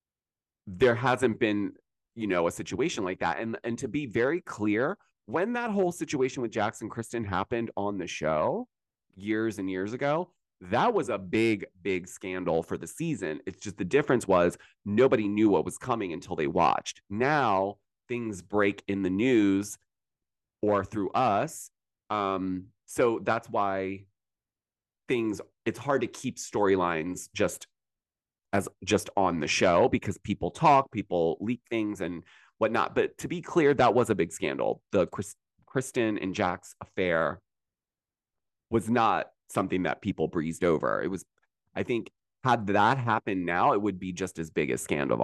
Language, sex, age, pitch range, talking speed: English, male, 30-49, 95-115 Hz, 165 wpm